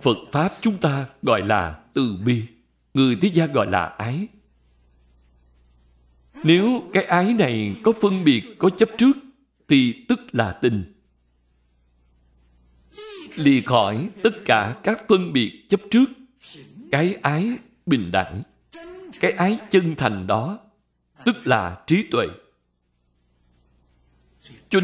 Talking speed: 125 wpm